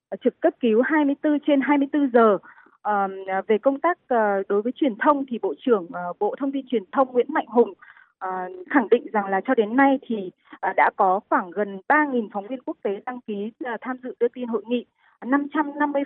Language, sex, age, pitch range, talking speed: Vietnamese, female, 20-39, 205-280 Hz, 215 wpm